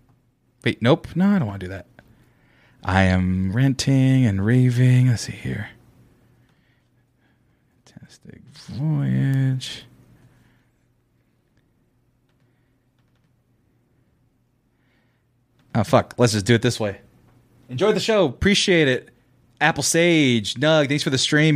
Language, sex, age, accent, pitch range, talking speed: English, male, 30-49, American, 115-155 Hz, 110 wpm